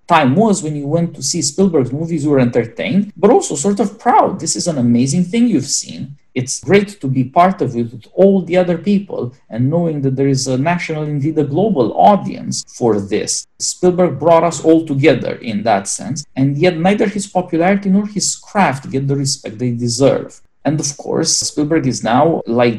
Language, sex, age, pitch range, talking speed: English, male, 50-69, 130-180 Hz, 205 wpm